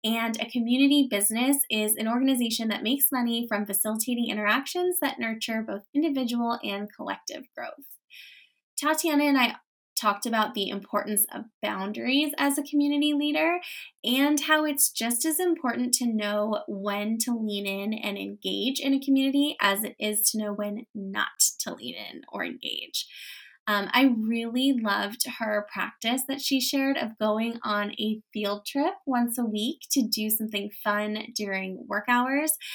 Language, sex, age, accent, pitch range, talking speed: English, female, 10-29, American, 205-275 Hz, 160 wpm